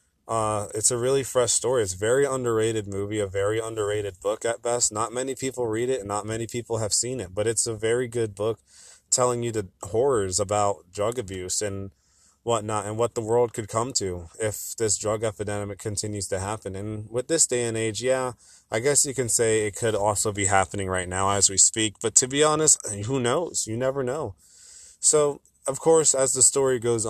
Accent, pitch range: American, 105-125 Hz